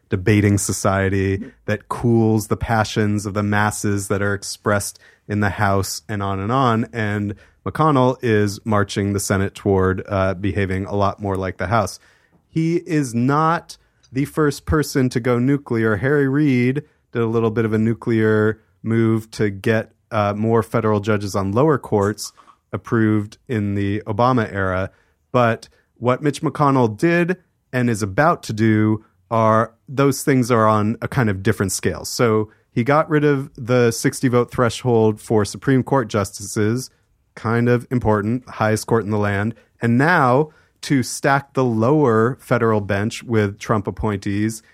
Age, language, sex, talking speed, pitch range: 30-49, English, male, 160 wpm, 105-130 Hz